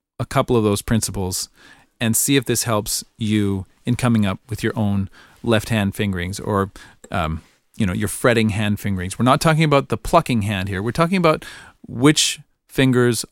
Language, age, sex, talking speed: English, 40-59, male, 185 wpm